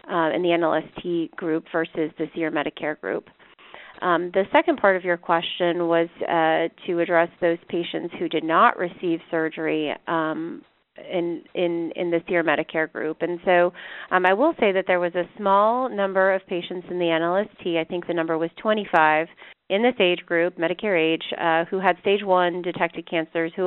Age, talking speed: 30-49, 185 wpm